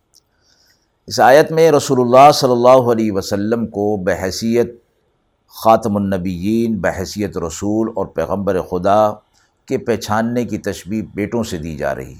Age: 50-69